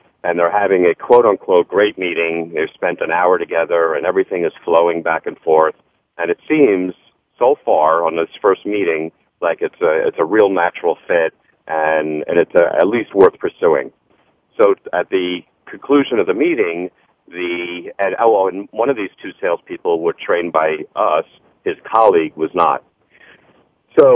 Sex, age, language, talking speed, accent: male, 40-59, English, 170 wpm, American